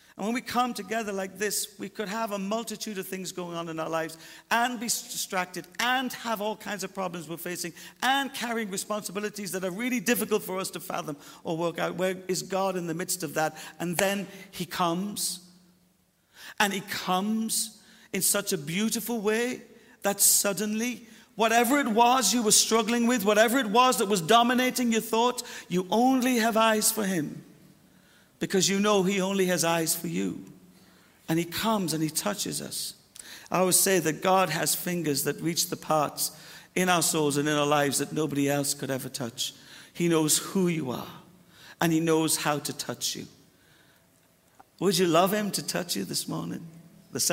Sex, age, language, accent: male, 50-69, English, British